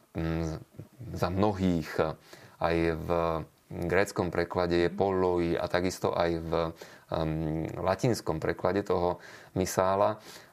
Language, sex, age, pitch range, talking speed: Slovak, male, 30-49, 85-105 Hz, 95 wpm